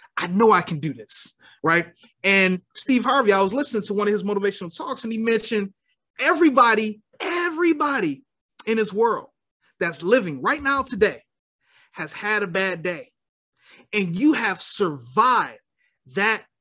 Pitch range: 200-275 Hz